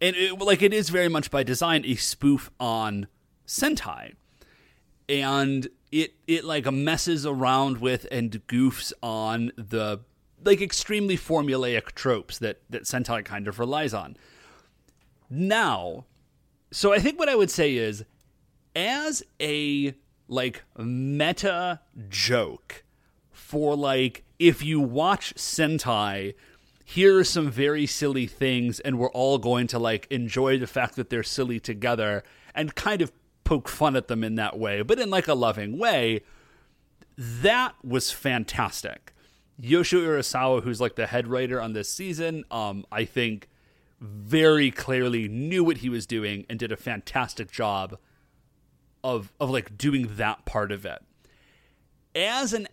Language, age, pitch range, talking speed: English, 30-49, 115-155 Hz, 145 wpm